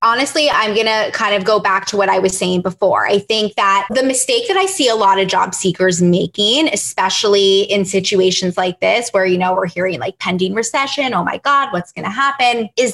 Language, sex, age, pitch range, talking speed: English, female, 20-39, 195-250 Hz, 225 wpm